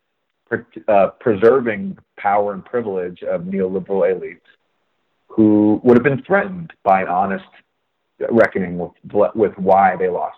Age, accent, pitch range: 30-49, American, 95-130 Hz